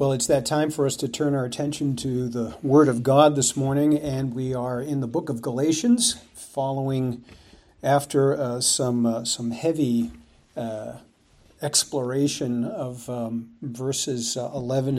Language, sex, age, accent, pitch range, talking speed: English, male, 50-69, American, 125-165 Hz, 155 wpm